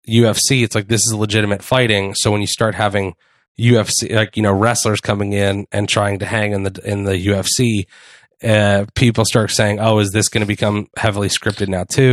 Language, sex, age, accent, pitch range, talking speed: English, male, 30-49, American, 100-120 Hz, 210 wpm